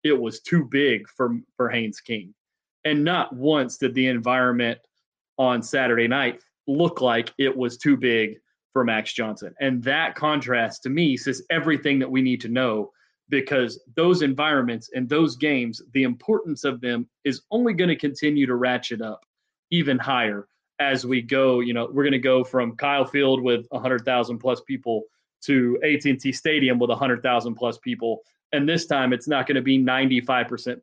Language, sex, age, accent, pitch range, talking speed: English, male, 30-49, American, 125-145 Hz, 170 wpm